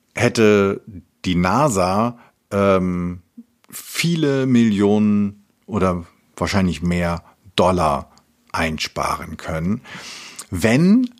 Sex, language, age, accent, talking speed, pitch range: male, German, 50-69, German, 70 wpm, 95-125 Hz